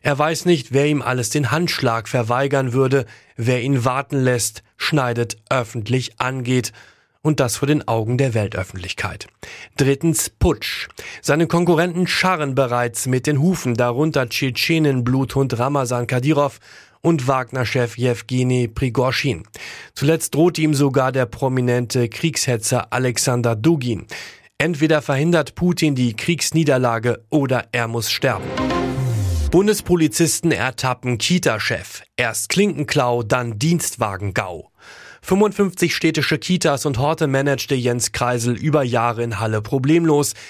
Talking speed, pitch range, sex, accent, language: 120 wpm, 120-150 Hz, male, German, German